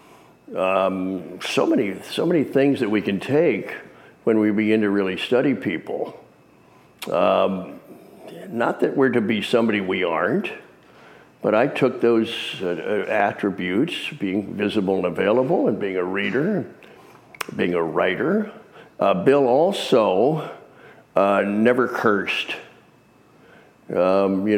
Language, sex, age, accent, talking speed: English, male, 60-79, American, 125 wpm